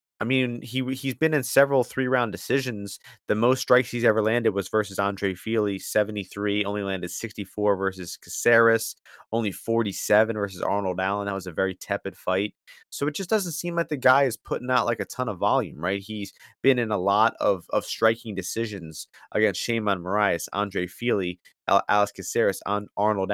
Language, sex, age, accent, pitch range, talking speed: English, male, 30-49, American, 100-120 Hz, 185 wpm